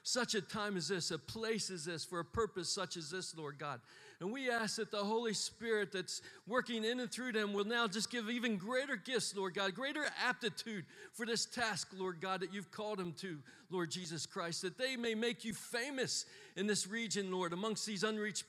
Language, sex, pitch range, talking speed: English, male, 195-245 Hz, 220 wpm